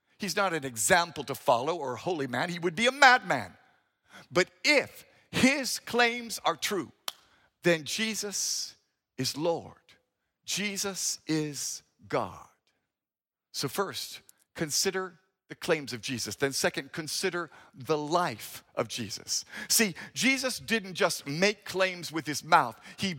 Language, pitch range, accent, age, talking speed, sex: English, 160-215 Hz, American, 50-69, 135 wpm, male